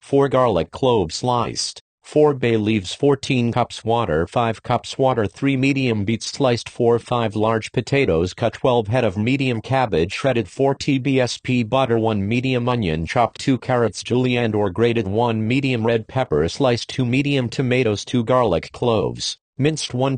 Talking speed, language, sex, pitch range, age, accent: 160 wpm, English, male, 110-130 Hz, 40-59, American